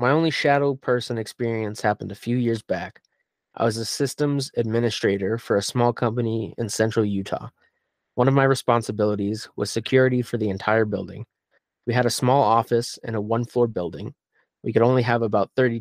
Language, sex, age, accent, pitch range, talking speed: English, male, 20-39, American, 110-130 Hz, 180 wpm